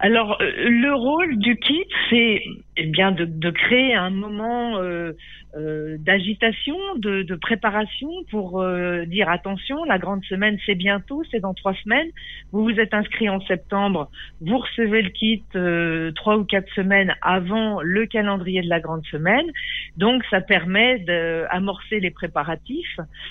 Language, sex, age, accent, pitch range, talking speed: French, female, 50-69, French, 180-230 Hz, 155 wpm